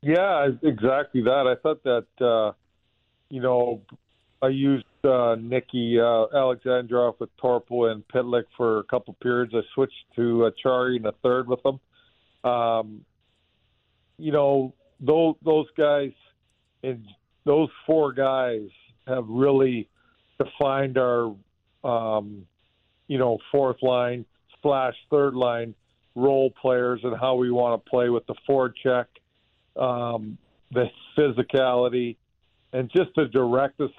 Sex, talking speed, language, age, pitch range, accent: male, 130 wpm, English, 50-69, 115-130 Hz, American